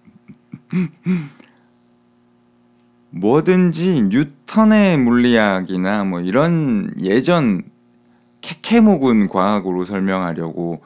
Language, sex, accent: Korean, male, native